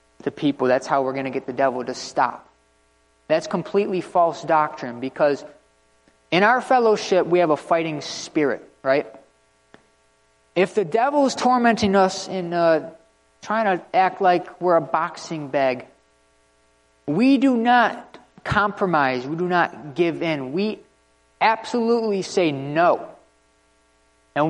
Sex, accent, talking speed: male, American, 135 wpm